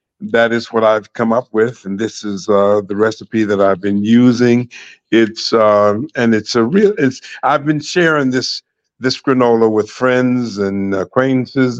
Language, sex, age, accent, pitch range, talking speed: English, male, 50-69, American, 105-120 Hz, 175 wpm